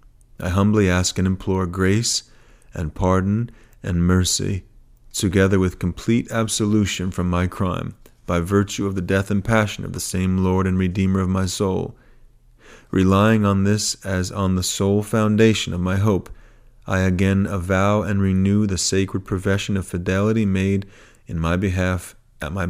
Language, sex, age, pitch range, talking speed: English, male, 40-59, 95-110 Hz, 160 wpm